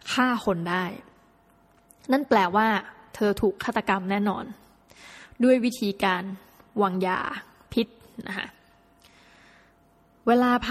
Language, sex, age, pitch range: Thai, female, 20-39, 190-230 Hz